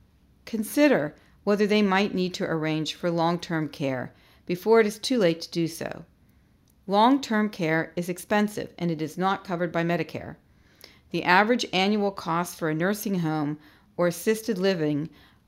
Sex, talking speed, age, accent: female, 155 wpm, 40-59, American